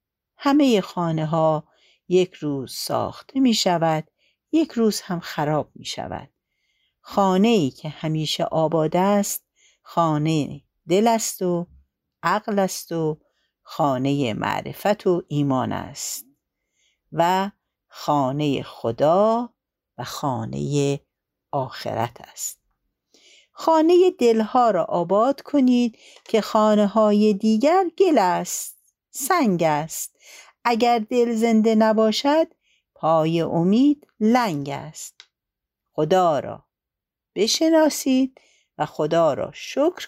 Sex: female